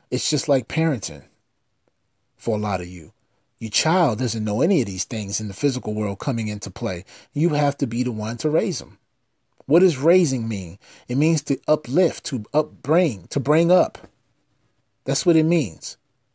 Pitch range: 115-155 Hz